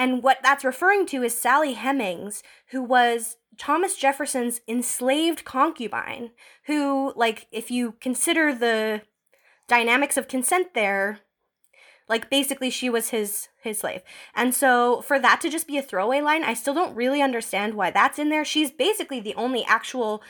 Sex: female